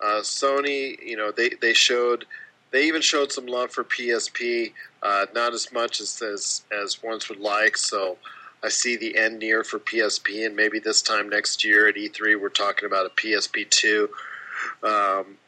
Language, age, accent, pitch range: English, 40-59, American, 105-125 Hz